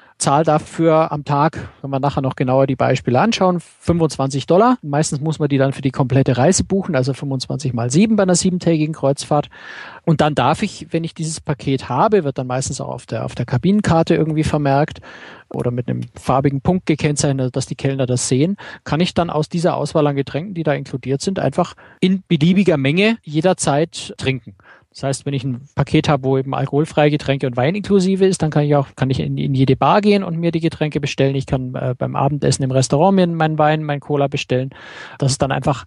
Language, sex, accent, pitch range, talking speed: German, male, German, 135-170 Hz, 215 wpm